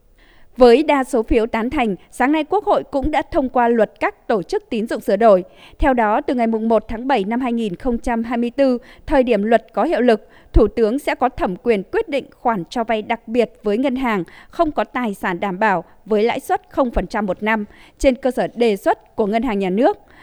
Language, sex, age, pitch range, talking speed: Vietnamese, female, 20-39, 215-255 Hz, 220 wpm